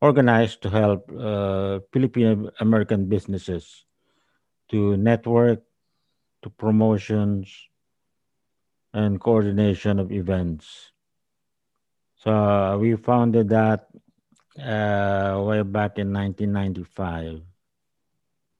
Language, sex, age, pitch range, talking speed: Filipino, male, 50-69, 100-115 Hz, 80 wpm